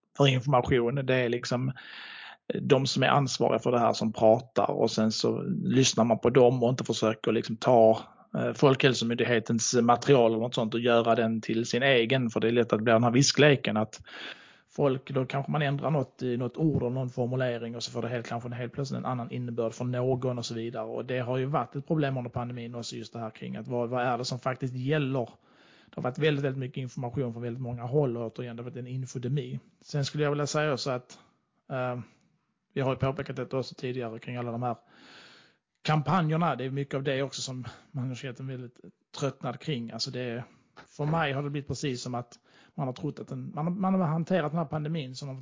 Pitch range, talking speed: 120-140 Hz, 225 wpm